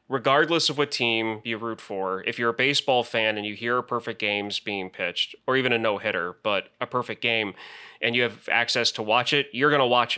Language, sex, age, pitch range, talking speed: English, male, 30-49, 115-140 Hz, 230 wpm